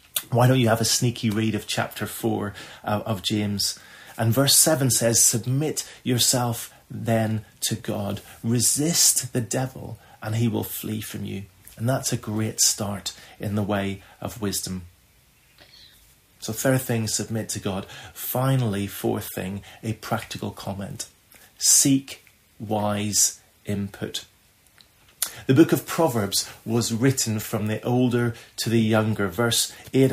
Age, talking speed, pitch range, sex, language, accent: 30-49, 135 wpm, 105-120 Hz, male, English, British